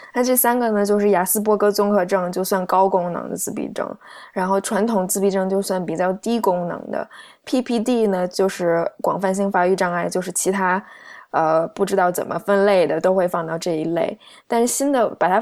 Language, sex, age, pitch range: Chinese, female, 20-39, 180-215 Hz